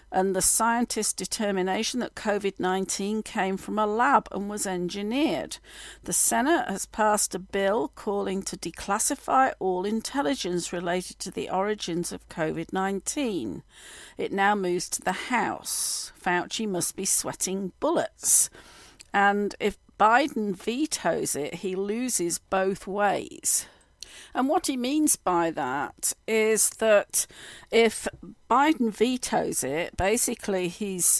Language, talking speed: English, 125 wpm